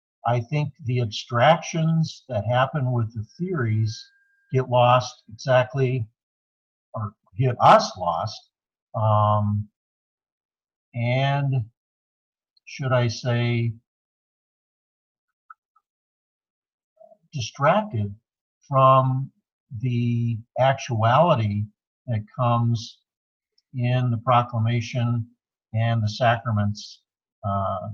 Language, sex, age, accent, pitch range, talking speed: English, male, 60-79, American, 110-135 Hz, 75 wpm